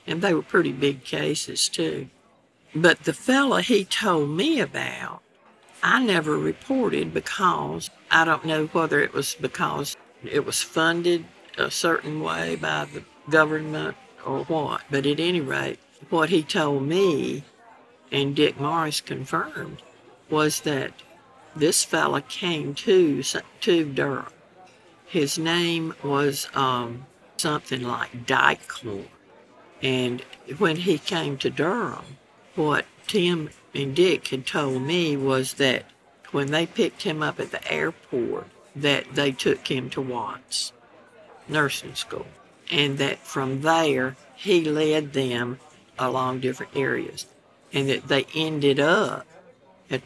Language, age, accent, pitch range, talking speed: English, 60-79, American, 130-160 Hz, 130 wpm